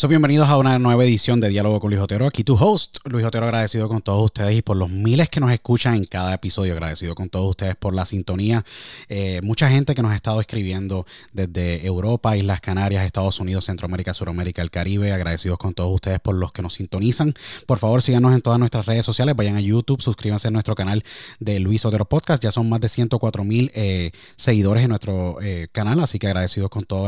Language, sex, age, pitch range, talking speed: Spanish, male, 20-39, 100-125 Hz, 215 wpm